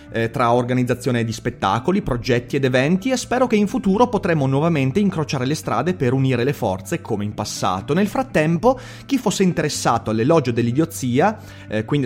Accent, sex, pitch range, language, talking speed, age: native, male, 115-180 Hz, Italian, 165 wpm, 30-49